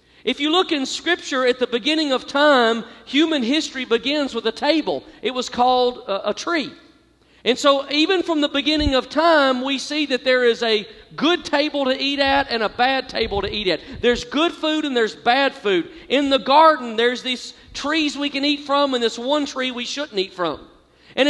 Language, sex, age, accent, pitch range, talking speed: English, male, 40-59, American, 255-305 Hz, 210 wpm